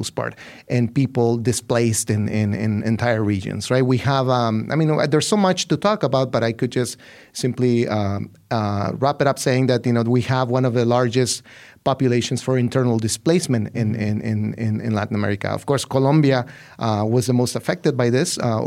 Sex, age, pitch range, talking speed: male, 30-49, 115-130 Hz, 200 wpm